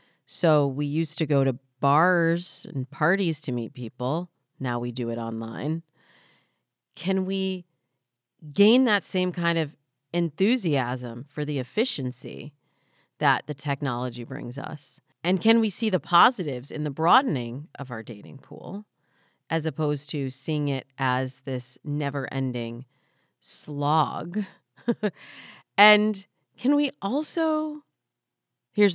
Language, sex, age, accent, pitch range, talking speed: English, female, 30-49, American, 130-185 Hz, 125 wpm